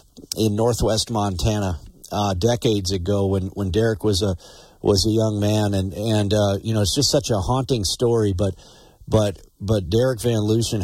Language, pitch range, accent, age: English, 100-130 Hz, American, 40-59